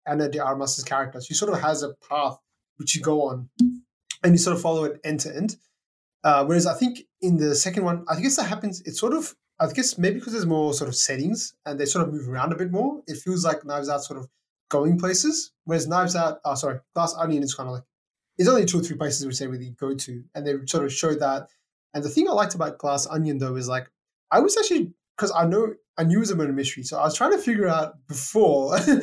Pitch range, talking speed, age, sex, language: 145-185 Hz, 260 wpm, 20-39, male, English